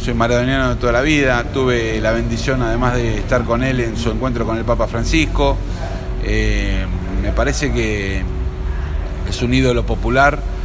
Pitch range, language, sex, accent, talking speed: 100-130 Hz, Spanish, male, Argentinian, 165 wpm